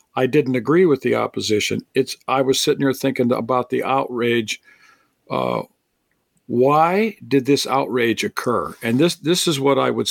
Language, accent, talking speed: English, American, 165 wpm